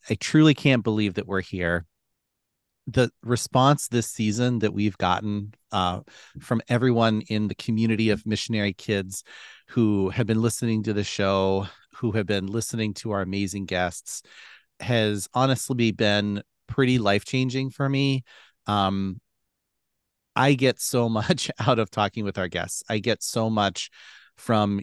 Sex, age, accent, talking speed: male, 40-59, American, 145 wpm